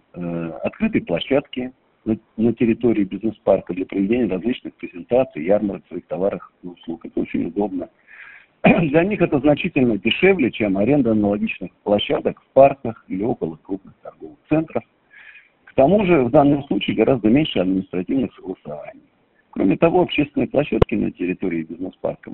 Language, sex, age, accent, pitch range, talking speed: Russian, male, 50-69, native, 100-155 Hz, 135 wpm